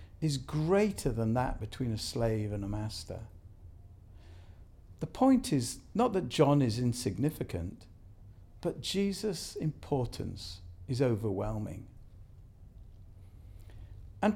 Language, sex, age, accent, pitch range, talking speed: English, male, 50-69, British, 95-145 Hz, 100 wpm